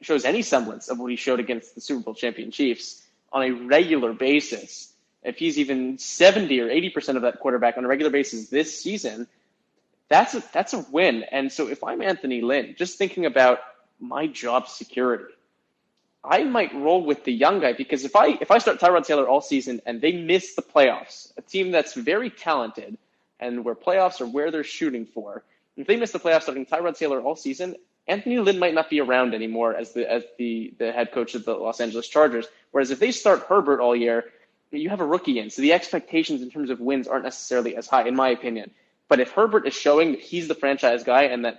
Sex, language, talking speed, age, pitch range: male, English, 220 wpm, 20-39, 120-160 Hz